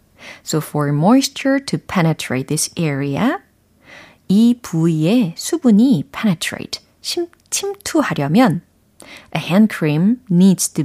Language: Korean